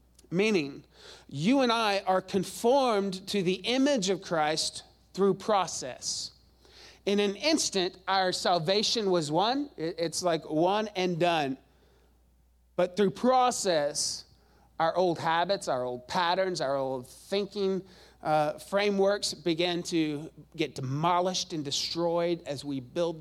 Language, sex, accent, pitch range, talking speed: English, male, American, 150-195 Hz, 125 wpm